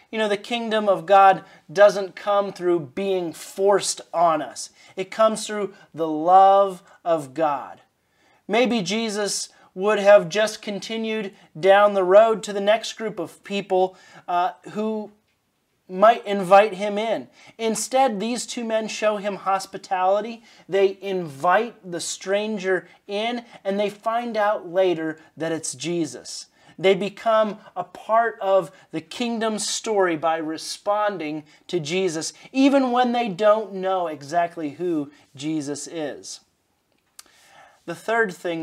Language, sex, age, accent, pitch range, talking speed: English, male, 30-49, American, 170-215 Hz, 130 wpm